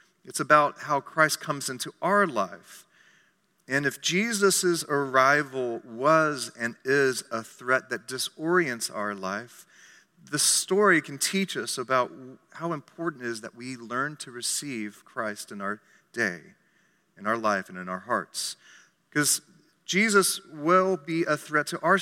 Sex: male